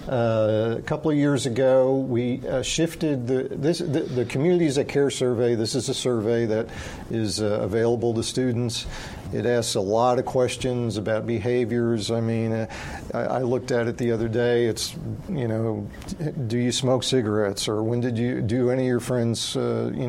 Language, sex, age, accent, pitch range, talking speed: English, male, 50-69, American, 115-130 Hz, 190 wpm